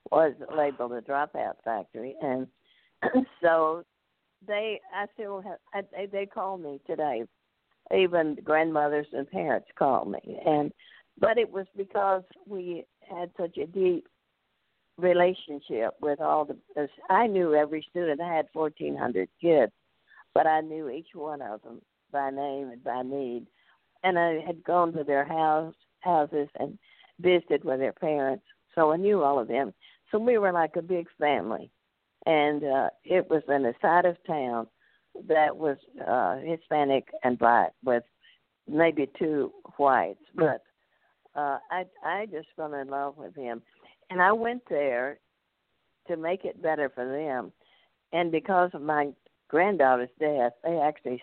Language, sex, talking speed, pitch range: English, female, 150 wpm, 140-175 Hz